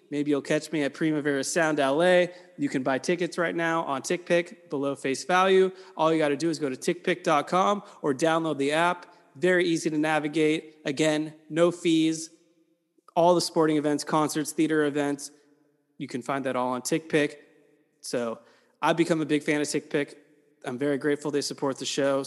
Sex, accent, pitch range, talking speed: male, American, 130-165 Hz, 185 wpm